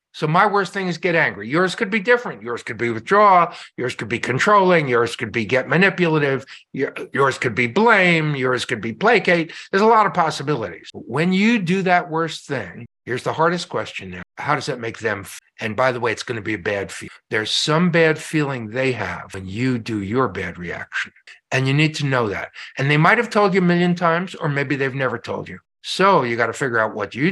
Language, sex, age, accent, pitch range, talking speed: English, male, 60-79, American, 120-185 Hz, 230 wpm